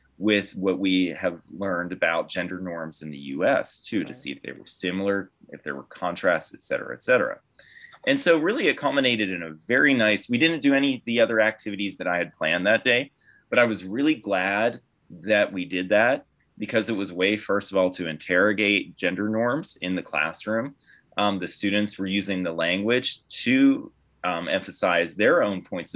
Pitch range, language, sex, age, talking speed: 90-115 Hz, English, male, 30-49, 195 wpm